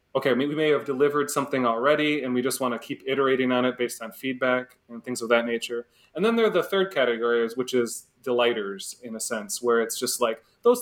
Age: 30-49